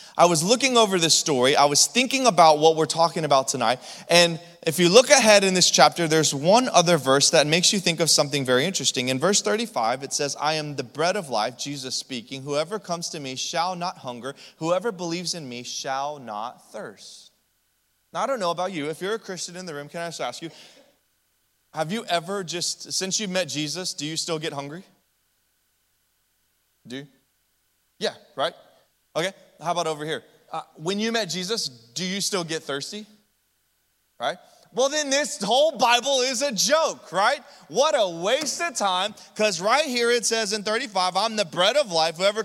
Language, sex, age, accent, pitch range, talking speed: English, male, 20-39, American, 160-225 Hz, 200 wpm